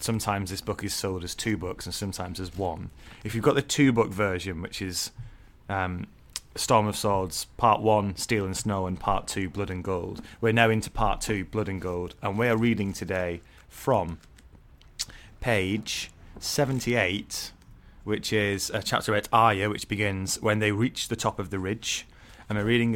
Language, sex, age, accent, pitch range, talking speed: English, male, 30-49, British, 95-110 Hz, 185 wpm